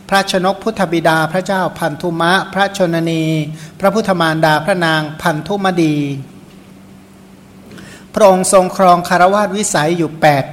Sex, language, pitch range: male, Thai, 155-190 Hz